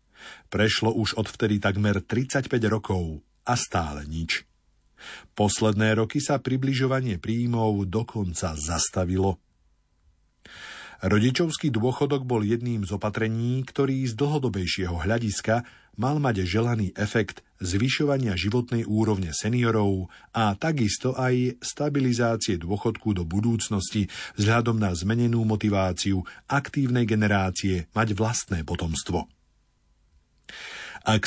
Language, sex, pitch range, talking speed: Slovak, male, 95-125 Hz, 100 wpm